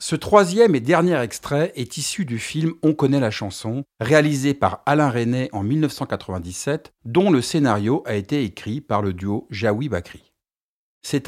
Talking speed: 170 wpm